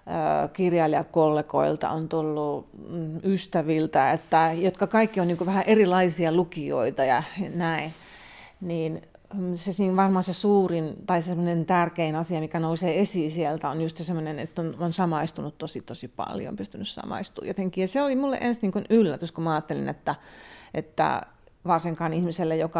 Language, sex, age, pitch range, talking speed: Finnish, female, 30-49, 165-195 Hz, 140 wpm